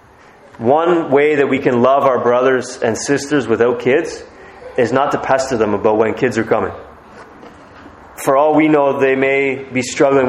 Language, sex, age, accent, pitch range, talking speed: English, male, 30-49, American, 120-150 Hz, 175 wpm